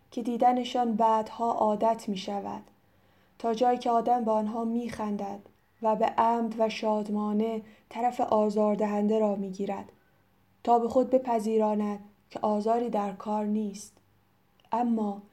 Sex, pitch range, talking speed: female, 205-230 Hz, 130 wpm